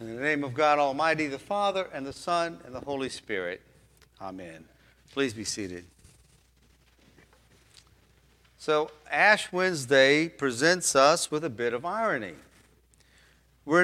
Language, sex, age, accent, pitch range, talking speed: English, male, 50-69, American, 115-170 Hz, 130 wpm